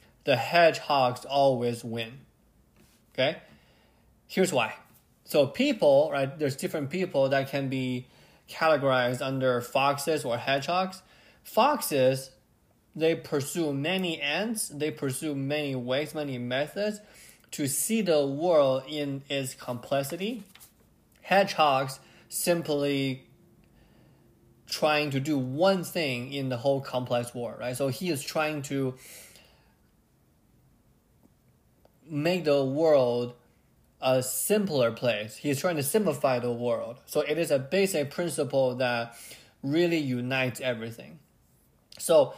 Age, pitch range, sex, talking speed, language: 20-39, 130-165 Hz, male, 115 wpm, English